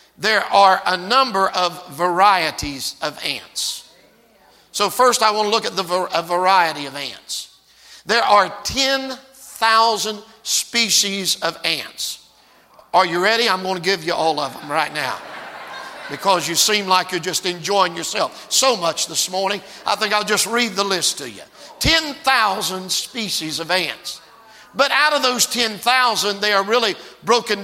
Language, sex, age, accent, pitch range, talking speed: English, male, 50-69, American, 180-215 Hz, 155 wpm